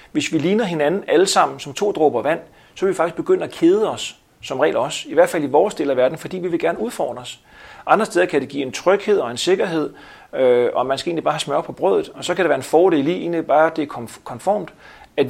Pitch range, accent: 140-205 Hz, native